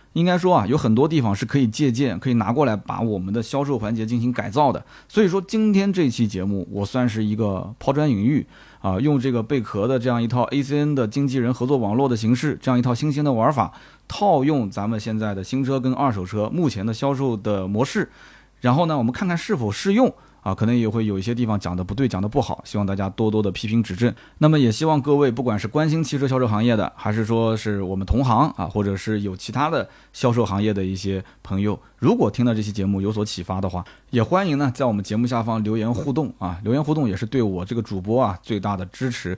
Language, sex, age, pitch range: Chinese, male, 20-39, 105-140 Hz